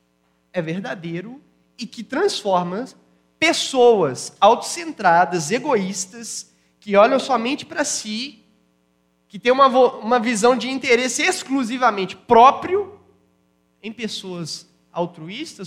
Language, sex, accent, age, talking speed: Portuguese, male, Brazilian, 20-39, 100 wpm